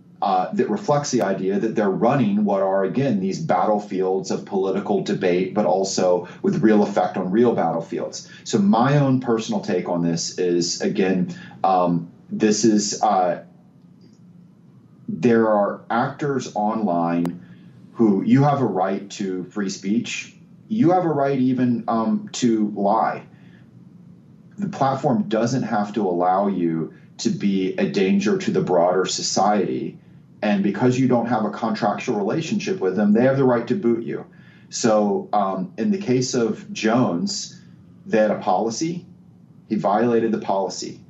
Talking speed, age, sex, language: 150 wpm, 30-49, male, English